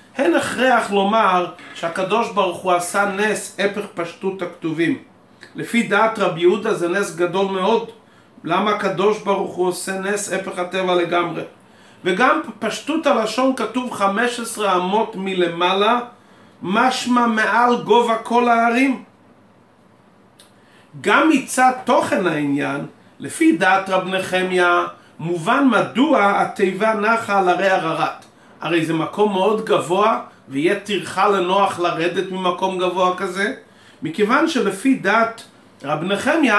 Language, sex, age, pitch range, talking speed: Hebrew, male, 40-59, 185-235 Hz, 115 wpm